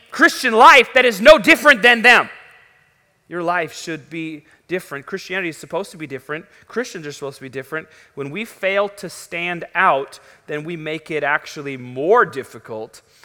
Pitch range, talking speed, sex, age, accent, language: 135-165 Hz, 170 wpm, male, 30-49, American, English